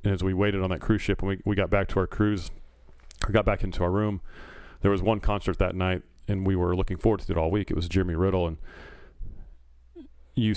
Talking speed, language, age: 240 wpm, English, 30-49